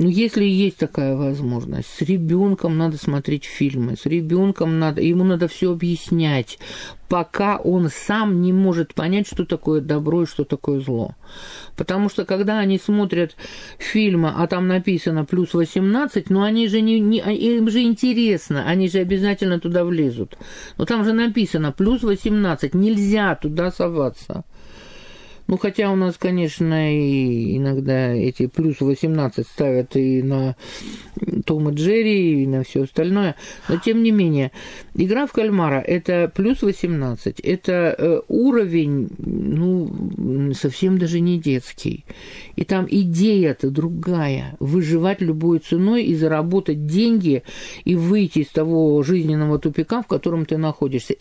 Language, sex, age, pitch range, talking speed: Russian, male, 50-69, 155-195 Hz, 140 wpm